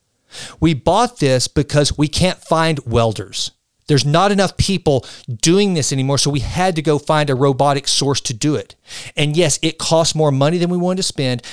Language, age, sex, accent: English, 50-69, male, American